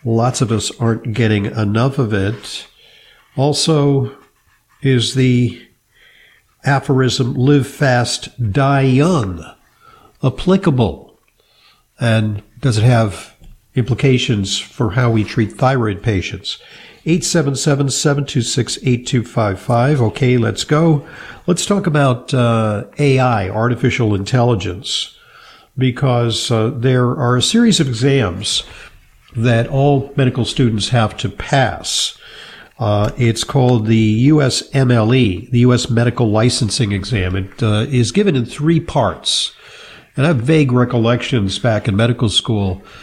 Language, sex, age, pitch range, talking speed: English, male, 50-69, 110-135 Hz, 110 wpm